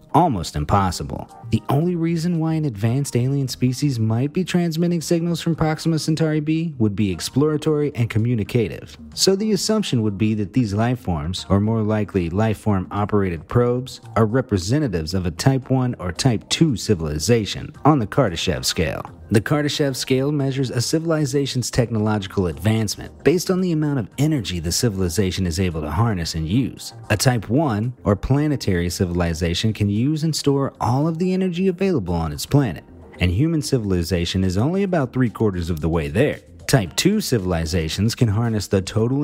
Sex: male